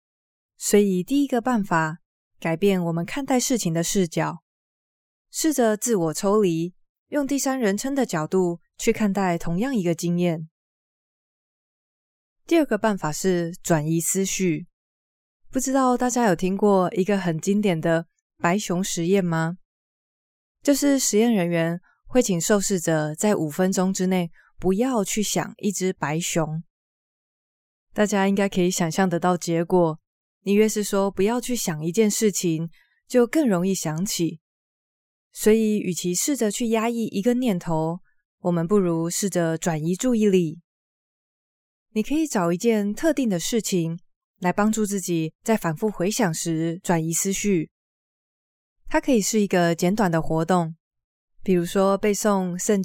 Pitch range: 170-215 Hz